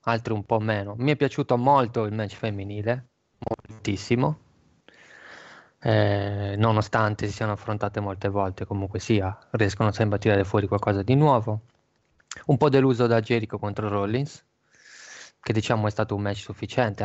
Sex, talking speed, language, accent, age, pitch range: male, 150 wpm, Italian, native, 20-39, 100-120 Hz